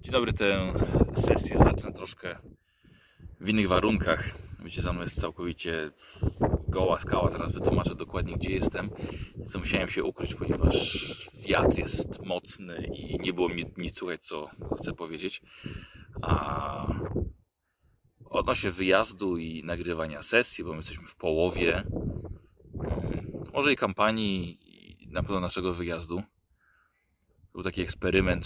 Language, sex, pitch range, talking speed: Polish, male, 85-100 Hz, 125 wpm